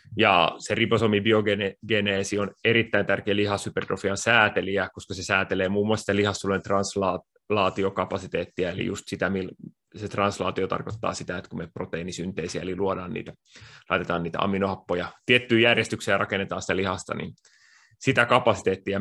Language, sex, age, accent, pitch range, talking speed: Finnish, male, 30-49, native, 95-110 Hz, 130 wpm